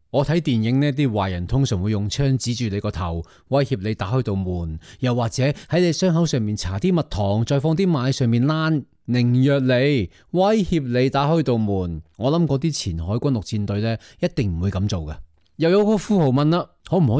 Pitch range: 105-160 Hz